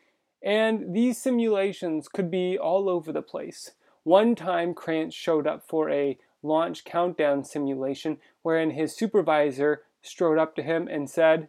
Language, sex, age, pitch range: English, male, 30-49, 150-190 Hz